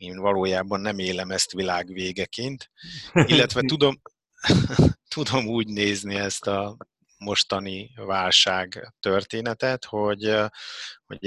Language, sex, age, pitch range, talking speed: Hungarian, male, 30-49, 95-110 Hz, 95 wpm